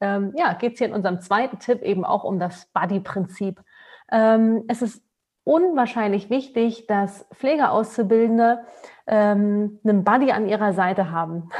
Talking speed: 125 wpm